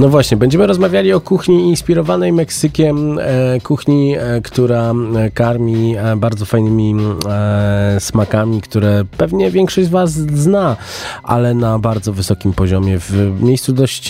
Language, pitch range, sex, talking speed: Polish, 90-115 Hz, male, 120 wpm